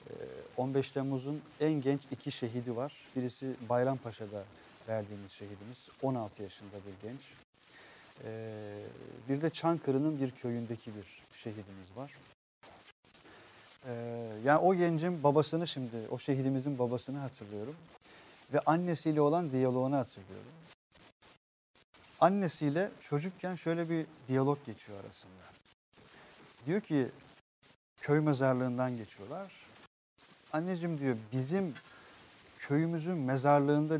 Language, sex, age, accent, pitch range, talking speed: Turkish, male, 40-59, native, 115-150 Hz, 95 wpm